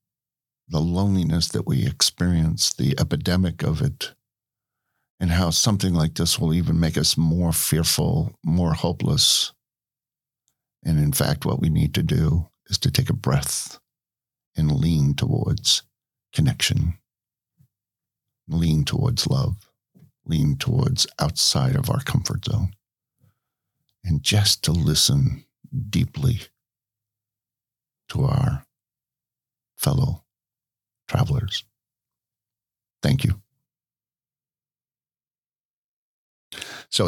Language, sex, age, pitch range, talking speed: English, male, 50-69, 85-130 Hz, 100 wpm